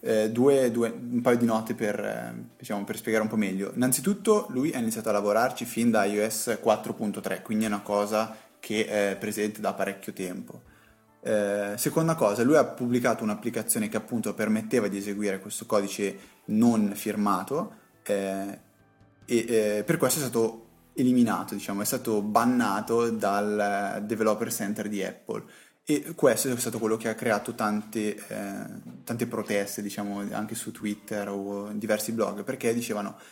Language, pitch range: Italian, 105-115 Hz